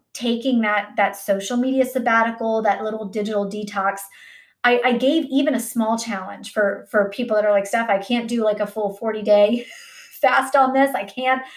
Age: 30-49